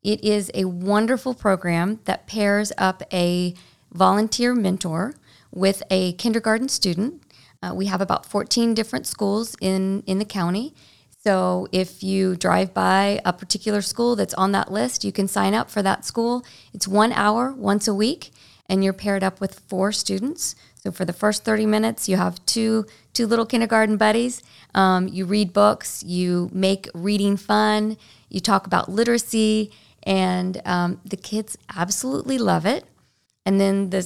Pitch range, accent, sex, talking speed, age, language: 185-220 Hz, American, female, 165 wpm, 40-59, English